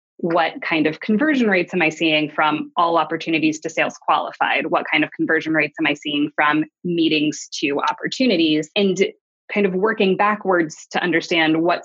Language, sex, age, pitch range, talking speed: English, female, 20-39, 160-200 Hz, 170 wpm